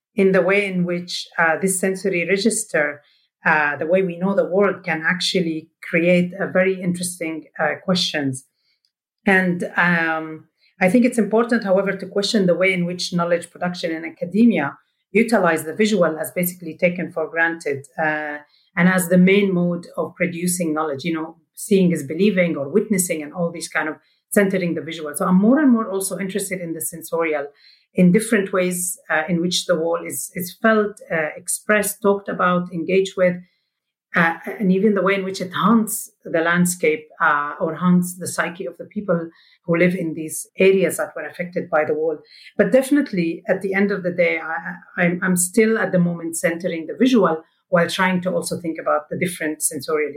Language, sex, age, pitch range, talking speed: English, female, 40-59, 165-195 Hz, 185 wpm